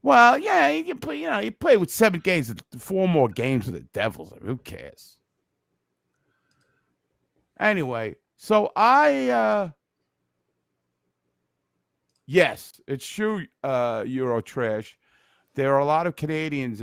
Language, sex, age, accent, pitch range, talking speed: English, male, 50-69, American, 120-200 Hz, 130 wpm